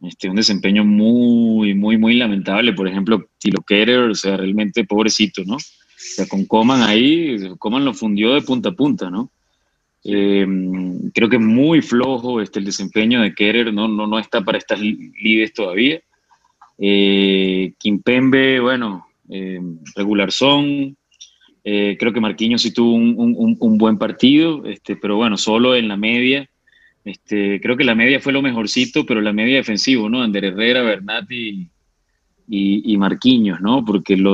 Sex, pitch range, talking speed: male, 100-120 Hz, 165 wpm